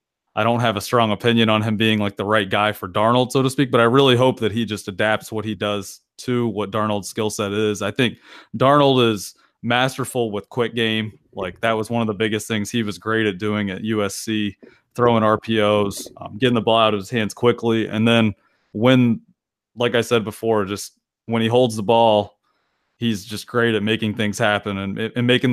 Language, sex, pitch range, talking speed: English, male, 105-120 Hz, 215 wpm